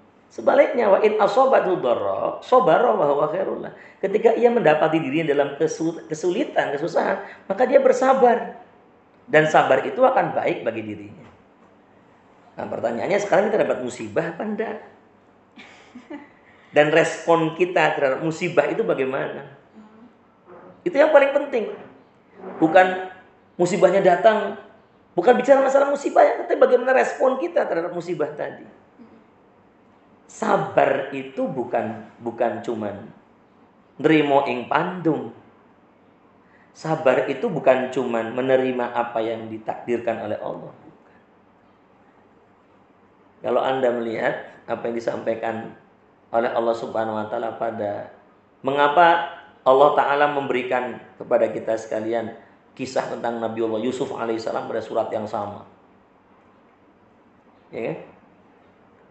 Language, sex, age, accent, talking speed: Indonesian, male, 40-59, native, 105 wpm